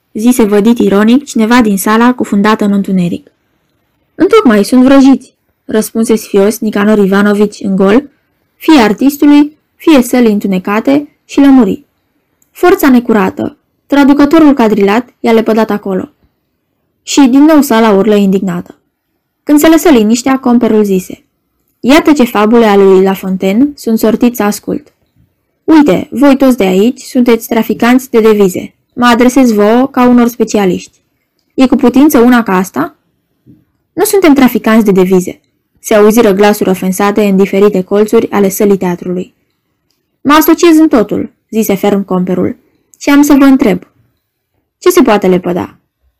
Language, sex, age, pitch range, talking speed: Romanian, female, 20-39, 205-275 Hz, 135 wpm